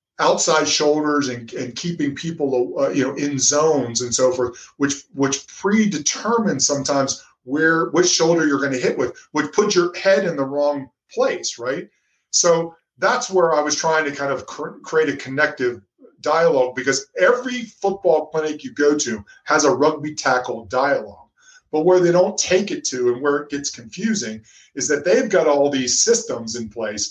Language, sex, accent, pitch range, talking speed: English, male, American, 130-170 Hz, 180 wpm